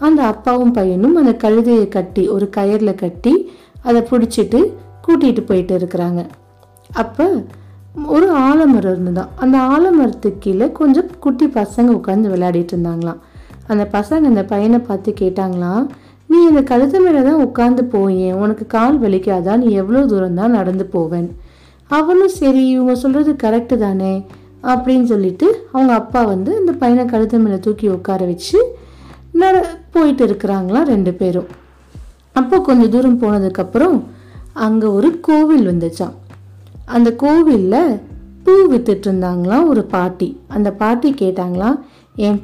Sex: female